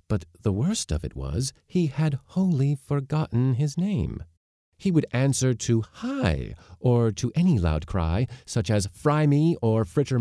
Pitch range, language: 85-145 Hz, English